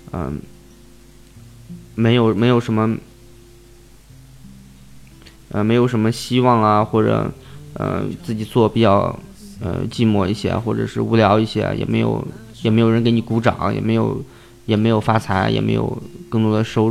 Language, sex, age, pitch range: Chinese, male, 20-39, 105-125 Hz